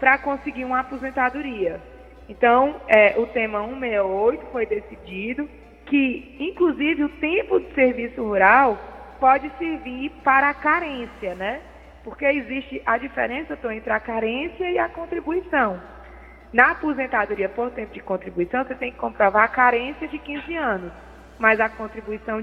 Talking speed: 135 wpm